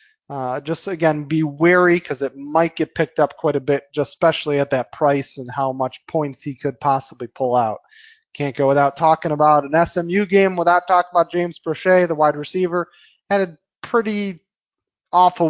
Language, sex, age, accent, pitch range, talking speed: English, male, 30-49, American, 145-190 Hz, 185 wpm